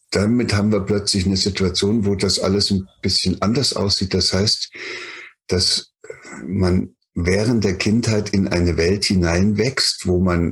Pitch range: 90-105 Hz